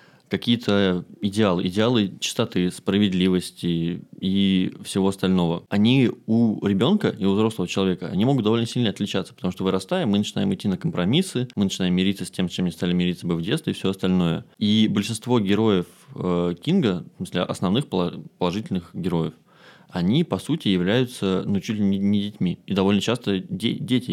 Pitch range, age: 90-115 Hz, 20-39